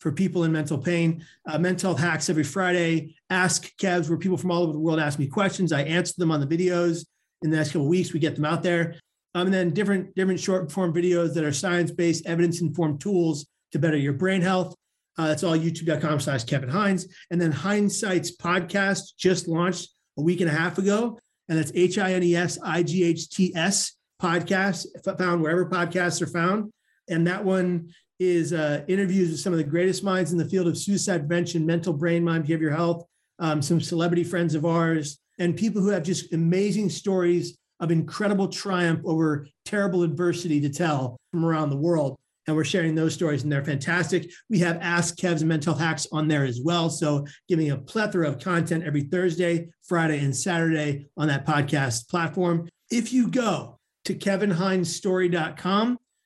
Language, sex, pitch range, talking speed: English, male, 160-185 Hz, 185 wpm